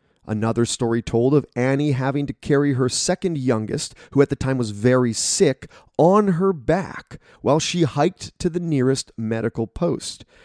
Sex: male